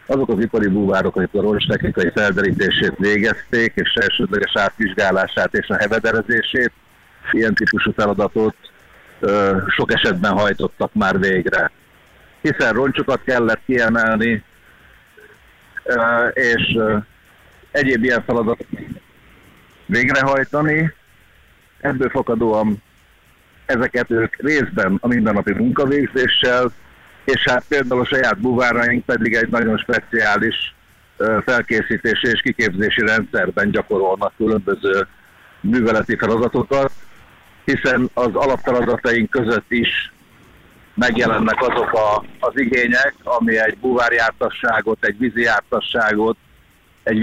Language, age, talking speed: Hungarian, 50-69, 100 wpm